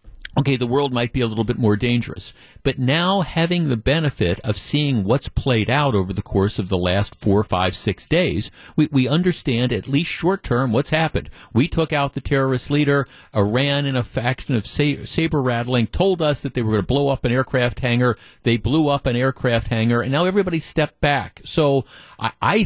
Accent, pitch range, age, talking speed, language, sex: American, 110-140 Hz, 50-69, 200 wpm, English, male